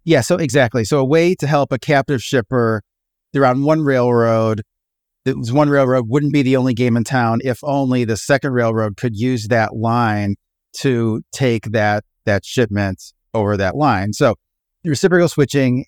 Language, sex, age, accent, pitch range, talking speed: English, male, 30-49, American, 110-135 Hz, 180 wpm